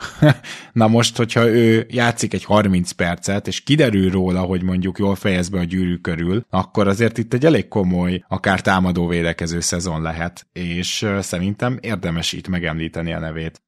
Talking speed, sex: 160 wpm, male